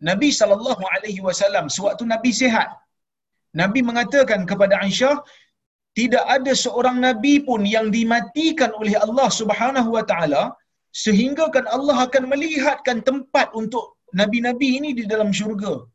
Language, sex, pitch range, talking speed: Malayalam, male, 190-260 Hz, 130 wpm